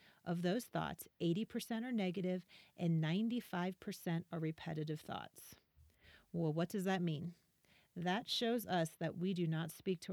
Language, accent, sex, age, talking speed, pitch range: English, American, female, 40-59, 150 wpm, 170-205 Hz